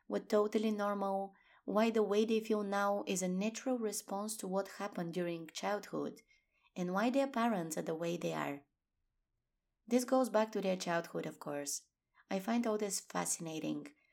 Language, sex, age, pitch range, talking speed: English, female, 20-39, 175-225 Hz, 170 wpm